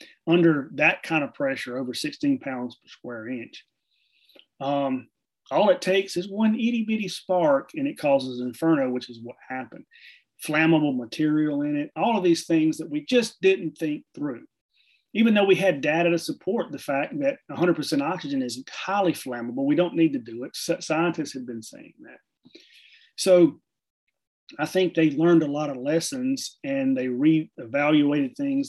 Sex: male